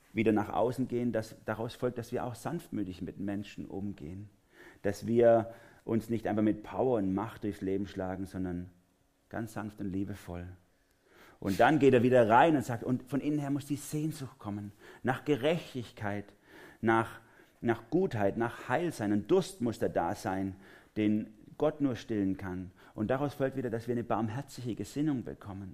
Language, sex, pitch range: German, male, 95-120 Hz